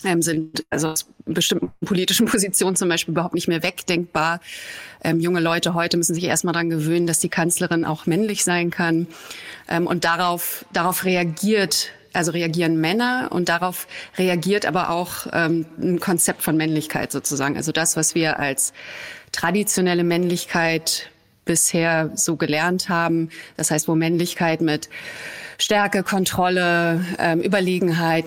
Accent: German